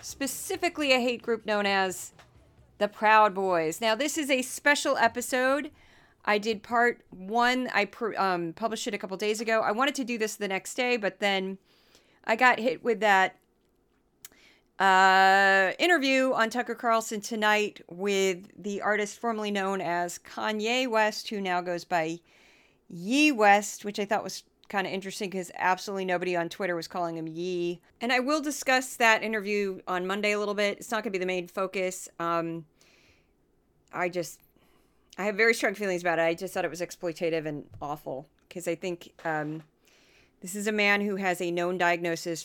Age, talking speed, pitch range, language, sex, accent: 40-59, 180 wpm, 175-225 Hz, English, female, American